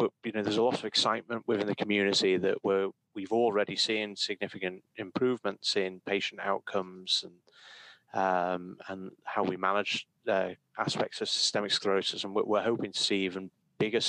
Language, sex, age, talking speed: English, male, 30-49, 165 wpm